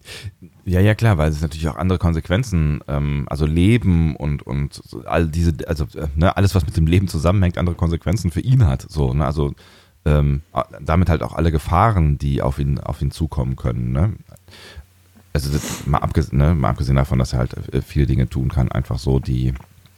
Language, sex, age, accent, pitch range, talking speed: German, male, 40-59, German, 75-95 Hz, 200 wpm